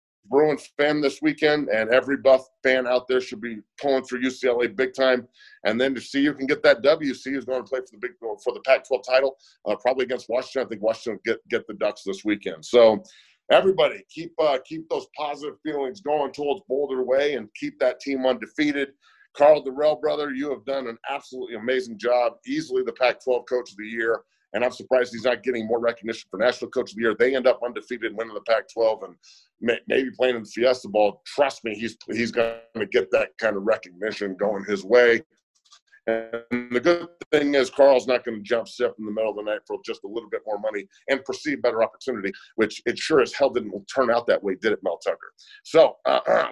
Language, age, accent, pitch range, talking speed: English, 40-59, American, 120-150 Hz, 220 wpm